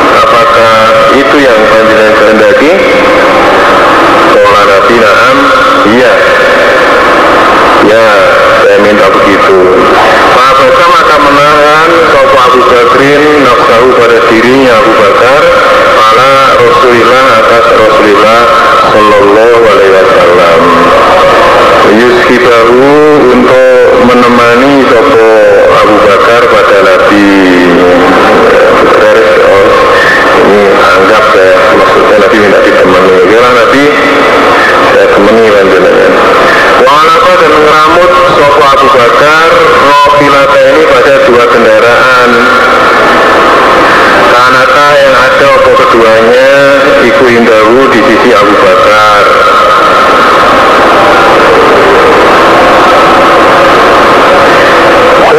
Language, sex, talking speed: Indonesian, male, 80 wpm